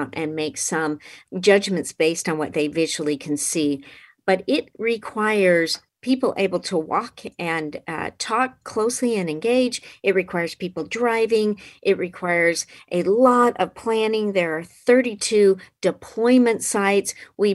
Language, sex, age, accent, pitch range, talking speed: English, female, 50-69, American, 165-215 Hz, 135 wpm